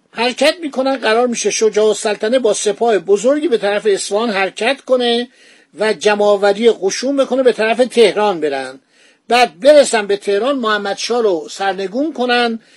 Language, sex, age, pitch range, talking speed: Persian, male, 50-69, 200-255 Hz, 145 wpm